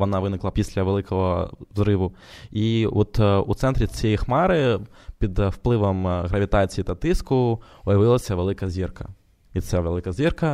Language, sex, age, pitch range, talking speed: Ukrainian, male, 20-39, 95-115 Hz, 130 wpm